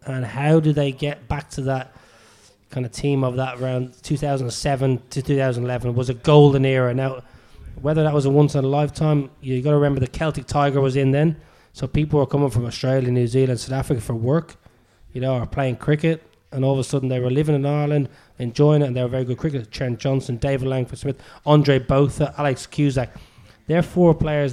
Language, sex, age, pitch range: English, male, 20-39, 125-145 Hz